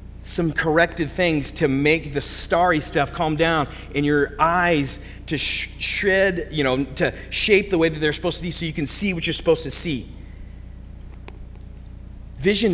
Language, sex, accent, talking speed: English, male, American, 170 wpm